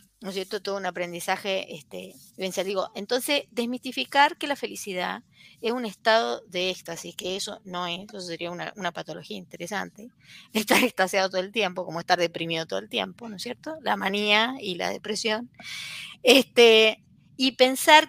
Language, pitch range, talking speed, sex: Spanish, 185-255 Hz, 175 wpm, female